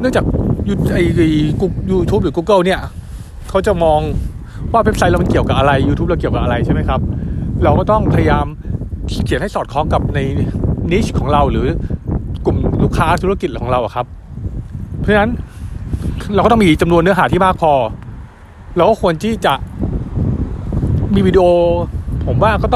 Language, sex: Thai, male